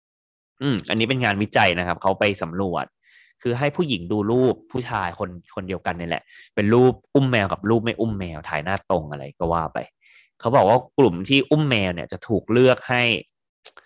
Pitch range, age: 90-120 Hz, 20-39